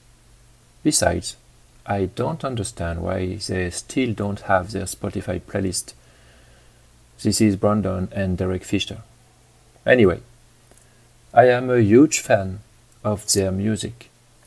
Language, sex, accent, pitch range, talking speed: French, male, French, 100-120 Hz, 110 wpm